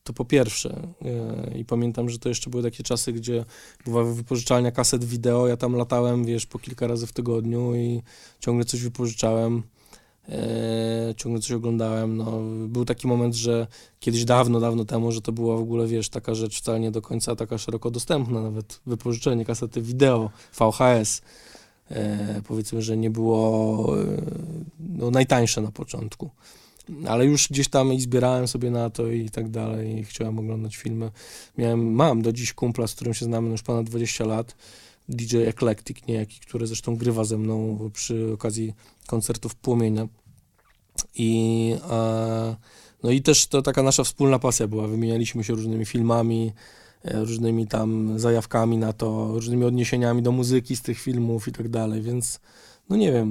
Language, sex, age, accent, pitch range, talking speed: Polish, male, 20-39, native, 110-120 Hz, 160 wpm